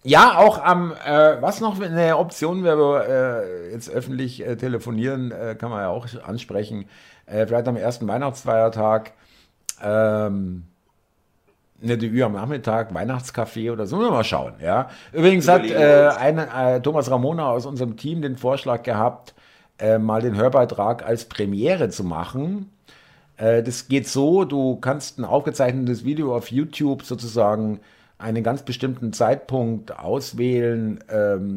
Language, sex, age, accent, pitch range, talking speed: German, male, 50-69, German, 110-140 Hz, 150 wpm